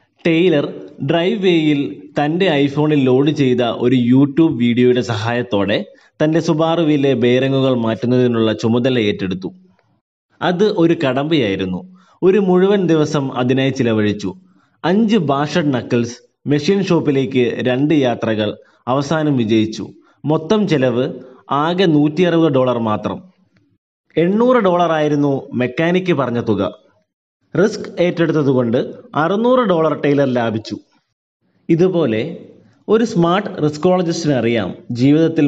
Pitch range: 120-165 Hz